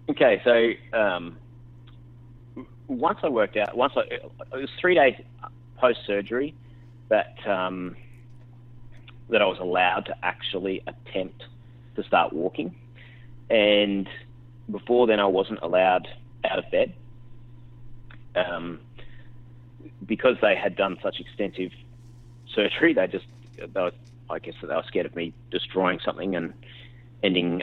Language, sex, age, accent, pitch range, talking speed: English, male, 30-49, Australian, 100-120 Hz, 130 wpm